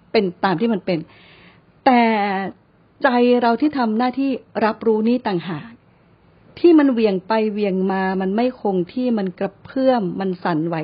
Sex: female